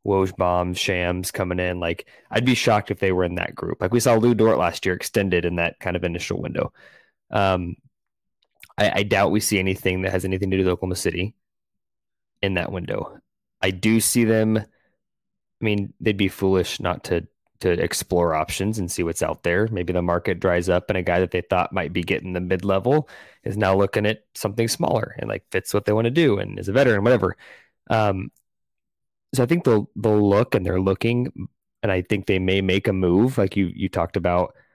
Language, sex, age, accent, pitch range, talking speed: English, male, 20-39, American, 90-105 Hz, 215 wpm